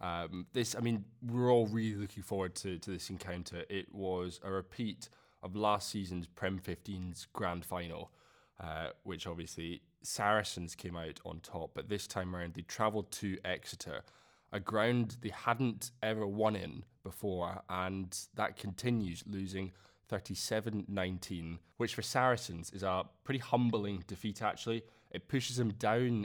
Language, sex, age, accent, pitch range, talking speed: English, male, 20-39, British, 90-110 Hz, 150 wpm